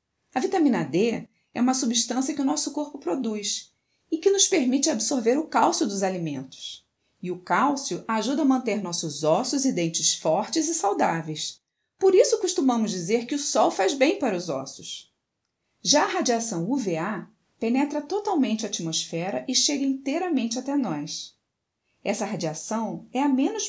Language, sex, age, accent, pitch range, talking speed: Portuguese, female, 30-49, Brazilian, 185-275 Hz, 160 wpm